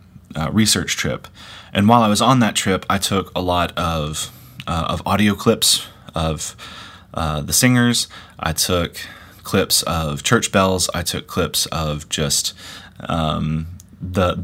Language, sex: English, male